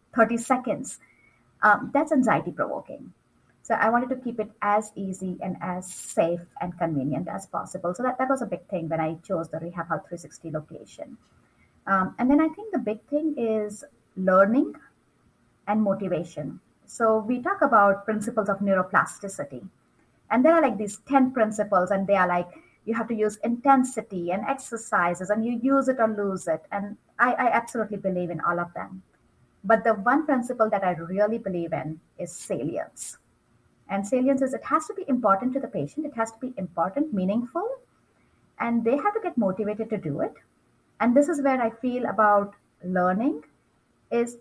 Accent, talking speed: Indian, 180 wpm